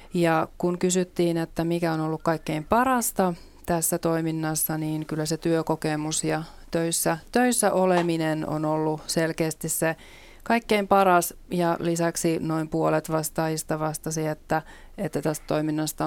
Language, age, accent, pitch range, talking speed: Finnish, 30-49, native, 155-180 Hz, 130 wpm